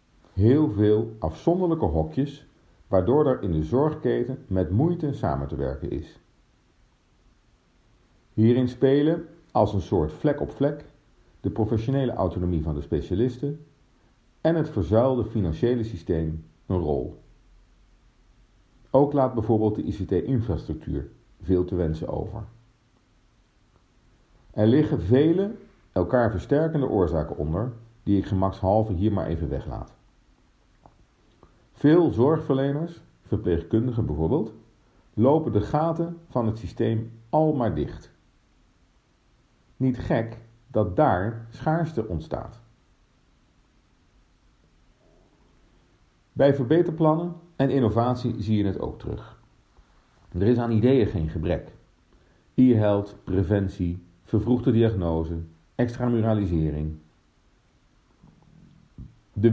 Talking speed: 100 wpm